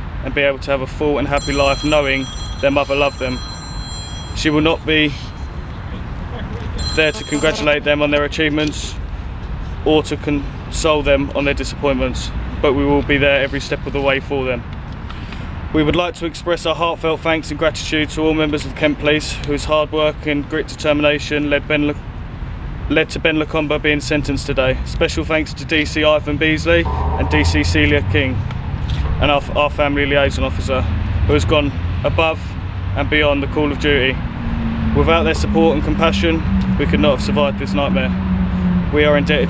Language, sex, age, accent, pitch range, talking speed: English, male, 20-39, British, 95-155 Hz, 180 wpm